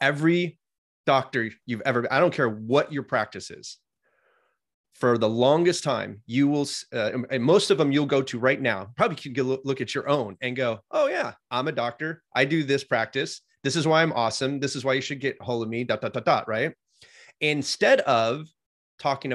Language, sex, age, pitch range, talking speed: English, male, 30-49, 125-170 Hz, 205 wpm